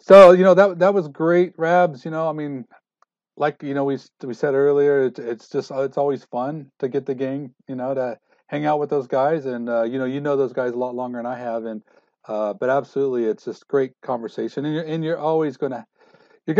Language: English